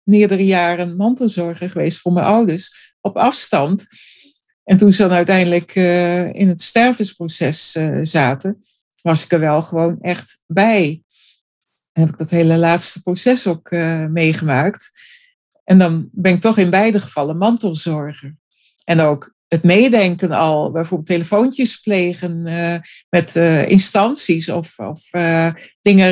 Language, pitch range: Dutch, 165-200 Hz